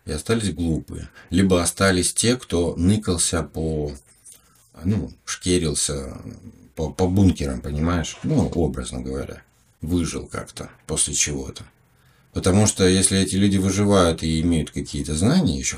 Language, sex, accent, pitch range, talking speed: Russian, male, native, 75-95 Hz, 125 wpm